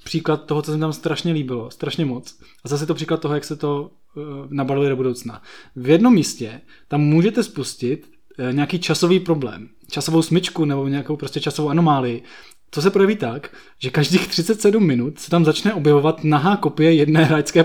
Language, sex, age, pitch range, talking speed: Czech, male, 20-39, 145-185 Hz, 185 wpm